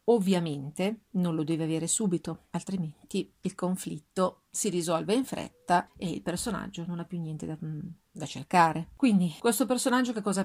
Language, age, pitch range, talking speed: Italian, 40-59, 175-215 Hz, 160 wpm